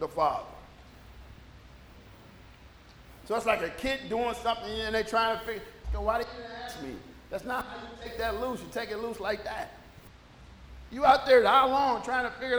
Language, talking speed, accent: English, 190 wpm, American